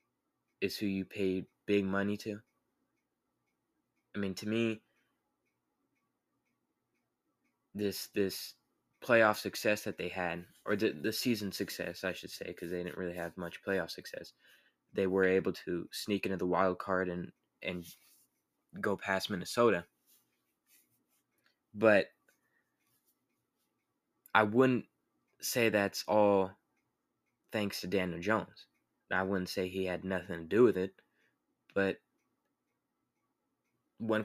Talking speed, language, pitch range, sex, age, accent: 125 wpm, English, 95-105 Hz, male, 20-39, American